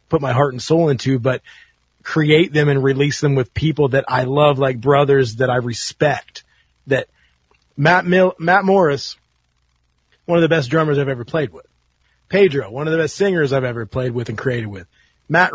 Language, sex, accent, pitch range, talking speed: English, male, American, 130-170 Hz, 195 wpm